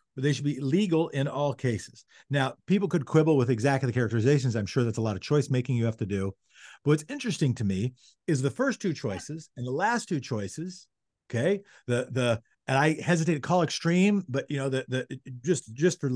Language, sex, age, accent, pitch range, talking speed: English, male, 50-69, American, 135-180 Hz, 225 wpm